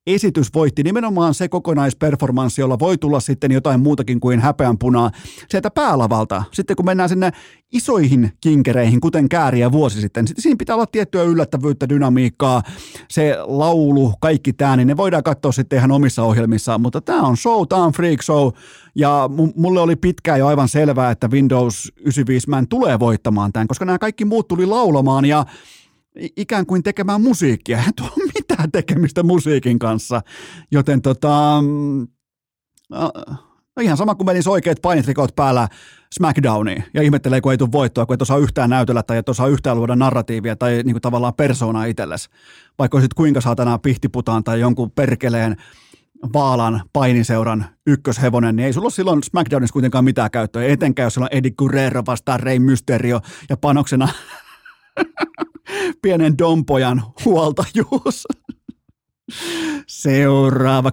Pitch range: 125-165 Hz